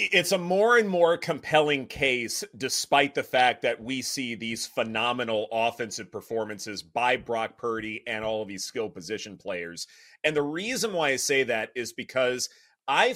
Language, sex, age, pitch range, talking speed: English, male, 30-49, 130-180 Hz, 170 wpm